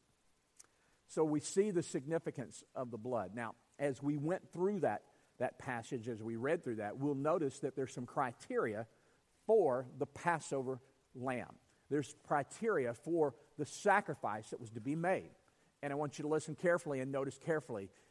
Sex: male